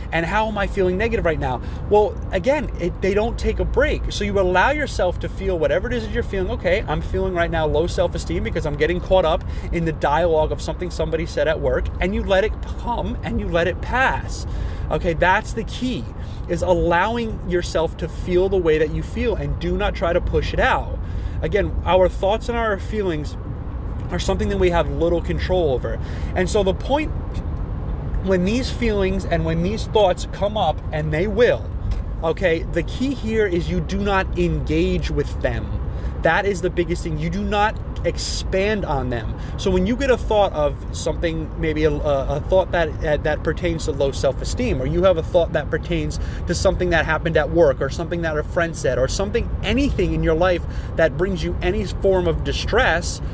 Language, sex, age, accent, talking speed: English, male, 30-49, American, 205 wpm